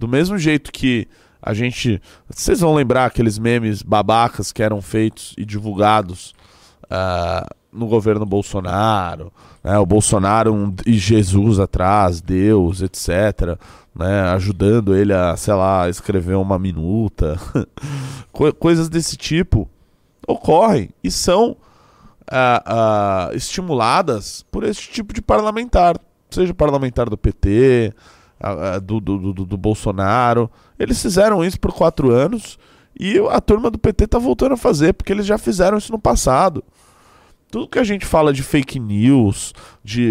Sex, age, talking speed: male, 20-39, 140 wpm